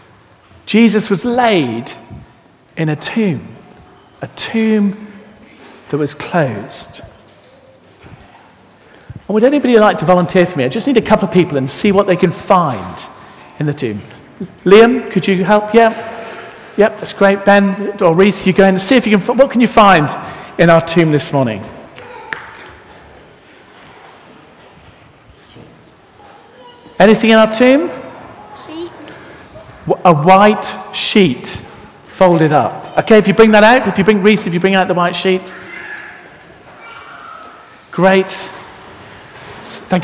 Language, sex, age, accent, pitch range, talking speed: English, male, 50-69, British, 180-225 Hz, 135 wpm